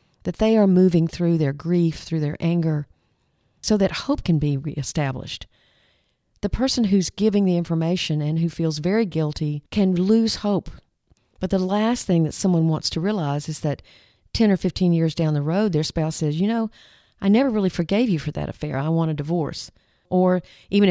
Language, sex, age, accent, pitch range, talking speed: English, female, 50-69, American, 150-190 Hz, 190 wpm